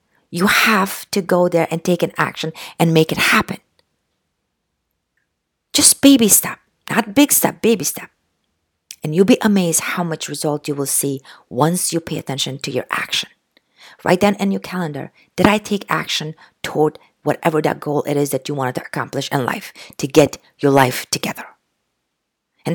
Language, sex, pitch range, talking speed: English, female, 160-220 Hz, 175 wpm